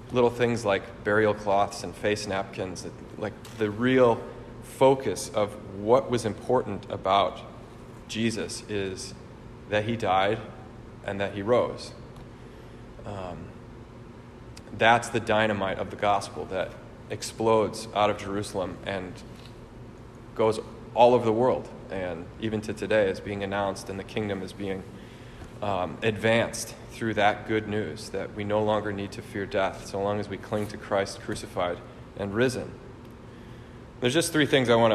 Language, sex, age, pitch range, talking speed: English, male, 30-49, 105-120 Hz, 150 wpm